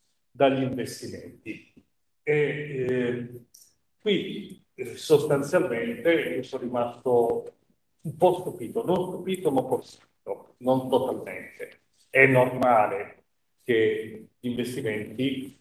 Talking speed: 90 wpm